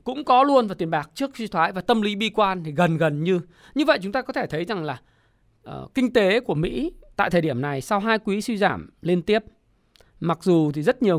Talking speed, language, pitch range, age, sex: 255 wpm, Vietnamese, 175-255 Hz, 20-39, male